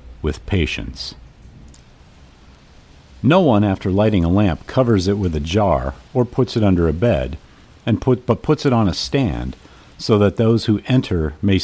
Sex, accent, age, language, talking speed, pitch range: male, American, 50-69, English, 170 wpm, 75-110 Hz